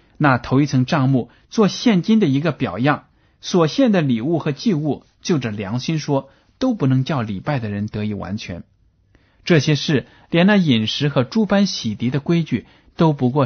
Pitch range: 105-155 Hz